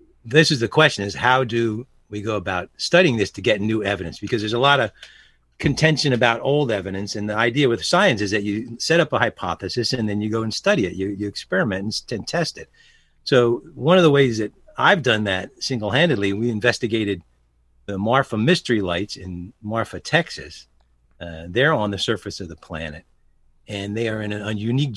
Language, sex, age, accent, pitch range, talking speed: English, male, 50-69, American, 95-120 Hz, 200 wpm